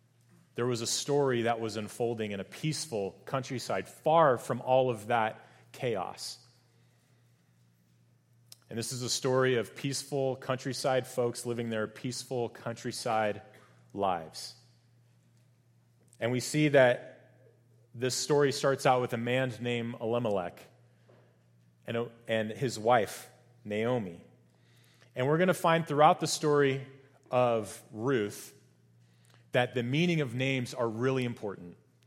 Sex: male